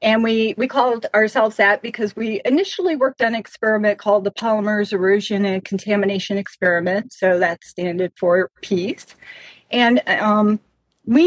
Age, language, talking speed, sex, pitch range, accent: 40-59, English, 150 wpm, female, 195-245 Hz, American